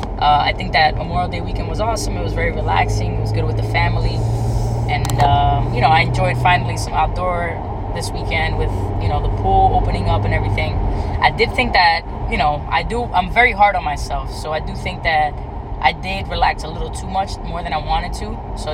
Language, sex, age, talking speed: English, female, 10-29, 230 wpm